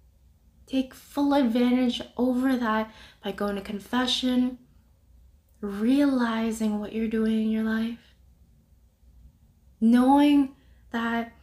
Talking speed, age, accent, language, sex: 95 wpm, 20-39, American, English, female